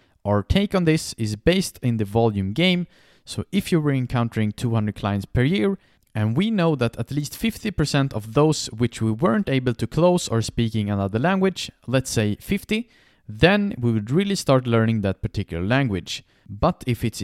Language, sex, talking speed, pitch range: English, male, 185 wpm, 105-170 Hz